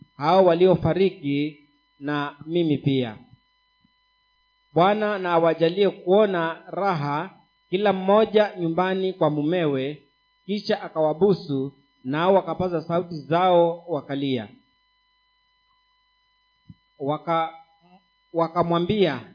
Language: Swahili